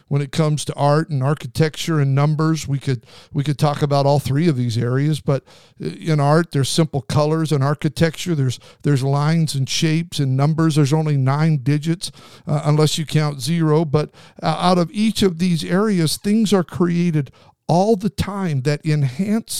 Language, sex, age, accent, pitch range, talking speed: English, male, 50-69, American, 130-160 Hz, 185 wpm